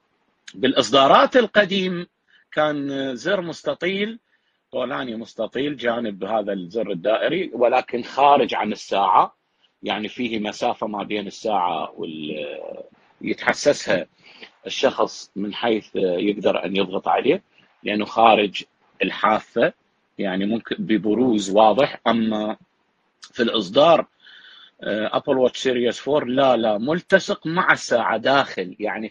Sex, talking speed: male, 105 wpm